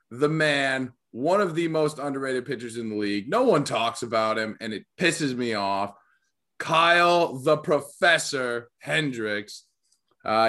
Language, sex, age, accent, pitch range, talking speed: English, male, 20-39, American, 110-135 Hz, 150 wpm